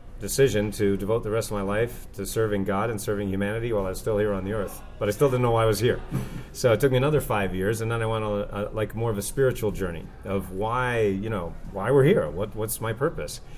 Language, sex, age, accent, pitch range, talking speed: English, male, 30-49, American, 100-115 Hz, 275 wpm